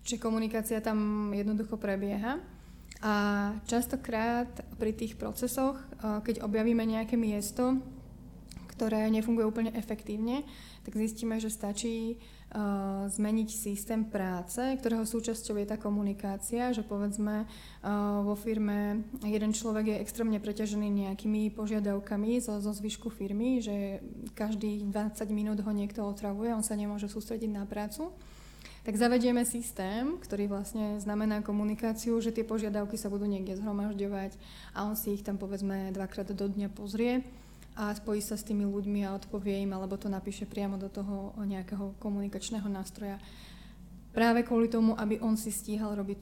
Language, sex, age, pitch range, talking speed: Slovak, female, 20-39, 205-225 Hz, 140 wpm